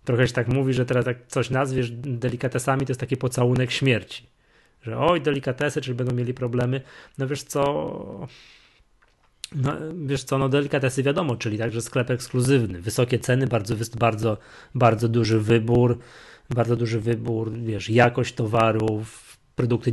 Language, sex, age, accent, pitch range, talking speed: Polish, male, 20-39, native, 110-135 Hz, 150 wpm